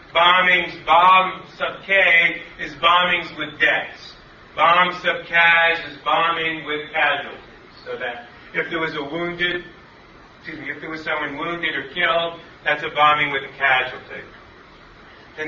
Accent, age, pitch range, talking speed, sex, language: American, 40-59, 140-175 Hz, 140 wpm, male, English